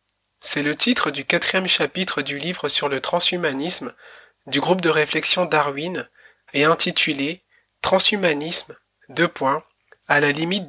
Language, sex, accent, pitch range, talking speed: French, male, French, 150-180 Hz, 140 wpm